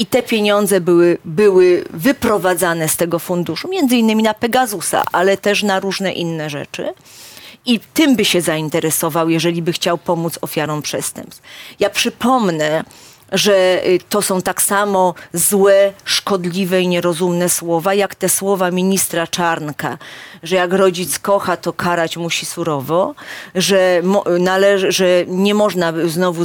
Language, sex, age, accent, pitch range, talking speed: Polish, female, 40-59, native, 170-205 Hz, 140 wpm